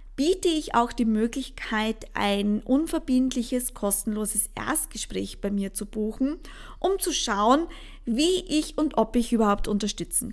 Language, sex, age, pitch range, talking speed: English, female, 20-39, 210-260 Hz, 135 wpm